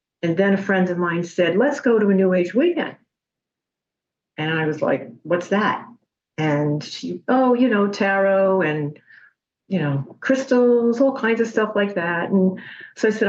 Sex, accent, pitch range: female, American, 170-210 Hz